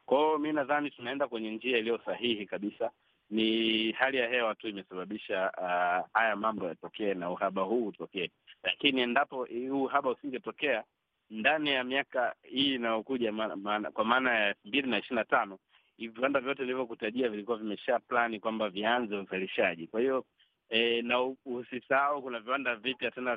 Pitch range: 105-135 Hz